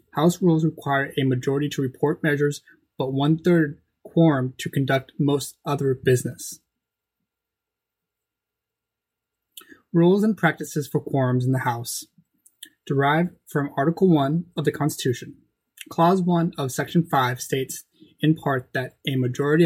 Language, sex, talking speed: English, male, 130 wpm